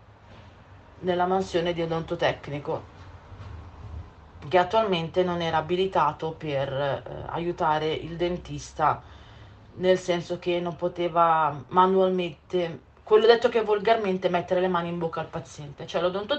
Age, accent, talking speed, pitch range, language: 40-59, native, 125 wpm, 145-185 Hz, Italian